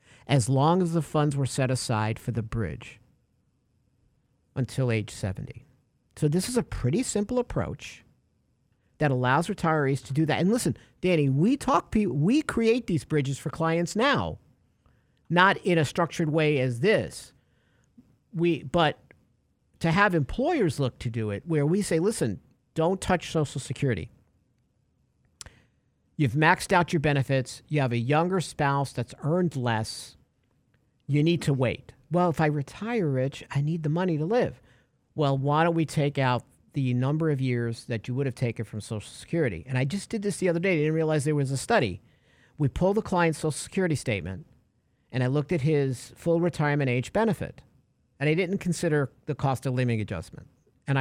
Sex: male